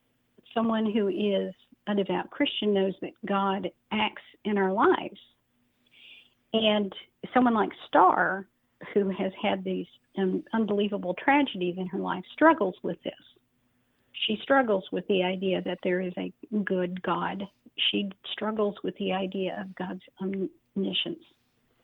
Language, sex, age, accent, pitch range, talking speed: English, female, 50-69, American, 185-210 Hz, 135 wpm